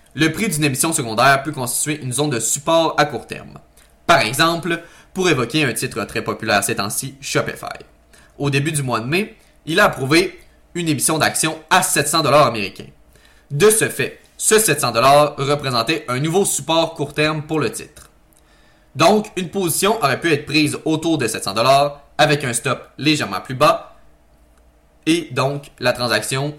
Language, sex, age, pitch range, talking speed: French, male, 20-39, 115-155 Hz, 165 wpm